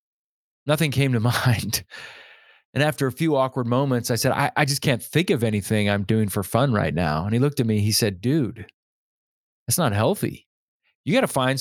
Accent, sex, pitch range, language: American, male, 115-155 Hz, English